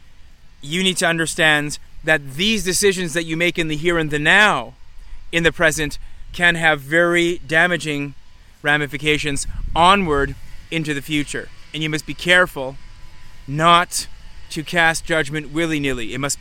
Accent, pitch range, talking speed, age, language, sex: American, 140-170 Hz, 145 wpm, 30-49, English, male